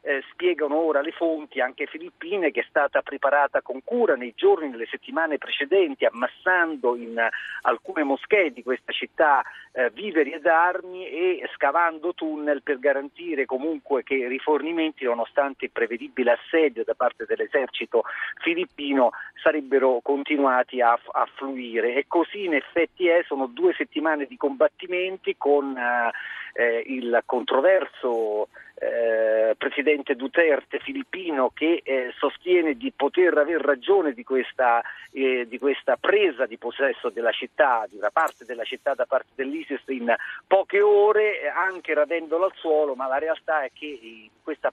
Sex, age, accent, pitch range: male, 50-69, native, 130-190 Hz